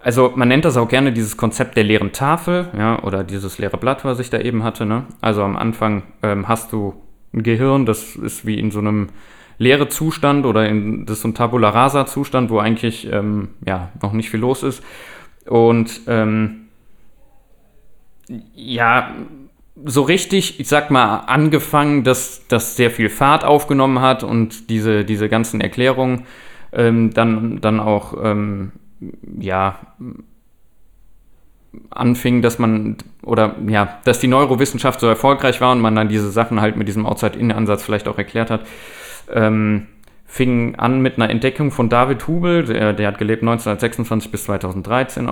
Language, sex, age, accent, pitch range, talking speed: German, male, 20-39, German, 110-130 Hz, 165 wpm